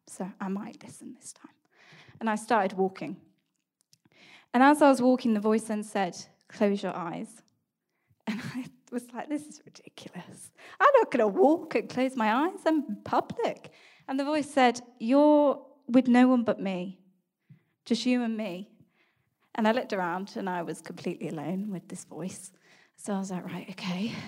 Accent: British